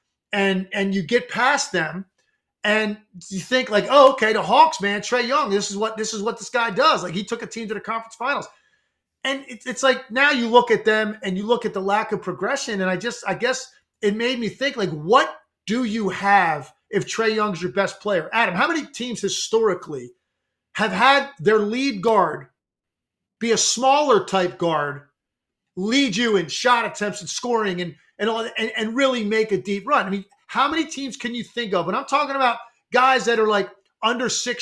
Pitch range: 205-265 Hz